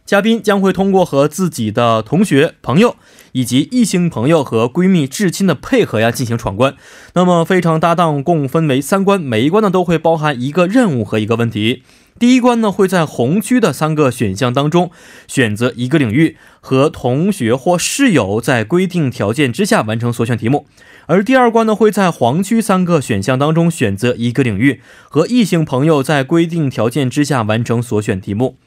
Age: 20-39